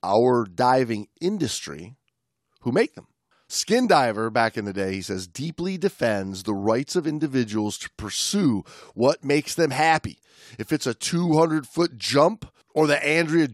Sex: male